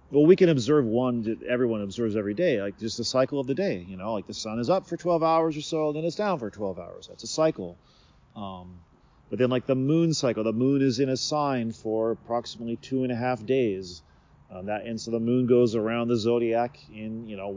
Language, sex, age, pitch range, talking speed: English, male, 40-59, 100-135 Hz, 245 wpm